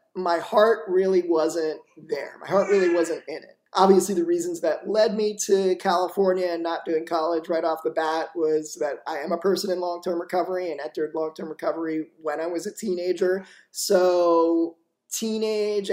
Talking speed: 175 wpm